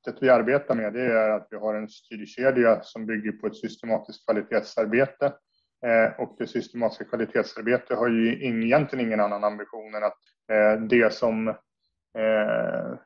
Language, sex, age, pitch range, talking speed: Swedish, male, 20-39, 105-130 Hz, 160 wpm